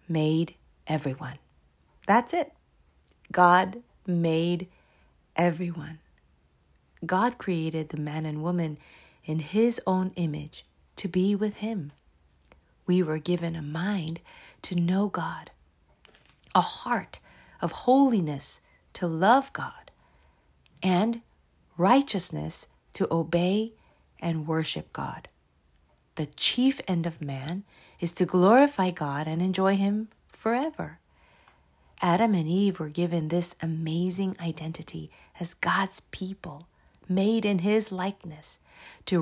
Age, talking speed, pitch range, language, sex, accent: 40-59, 110 wpm, 160-200 Hz, English, female, American